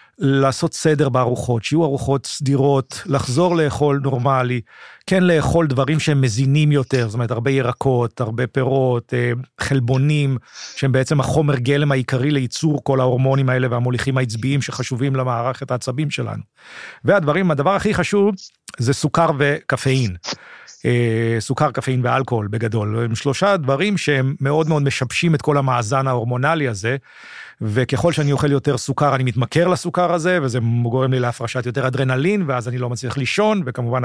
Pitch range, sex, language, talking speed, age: 130-155 Hz, male, Hebrew, 145 wpm, 40-59